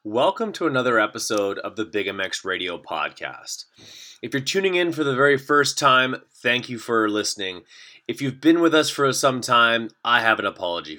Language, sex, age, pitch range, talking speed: English, male, 30-49, 110-135 Hz, 190 wpm